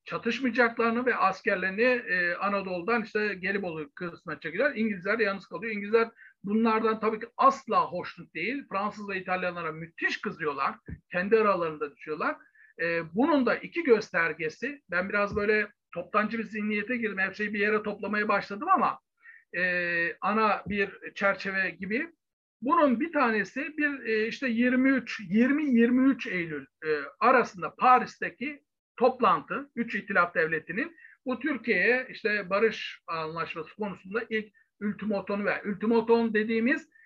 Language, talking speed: Turkish, 125 wpm